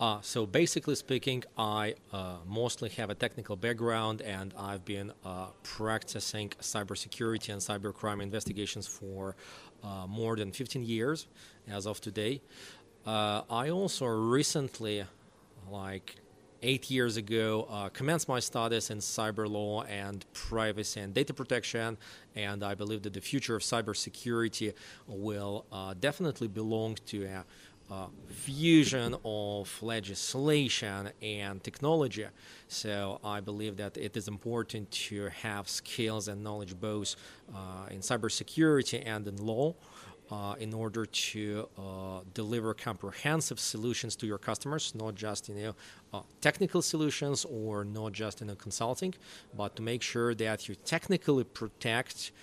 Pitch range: 100-120 Hz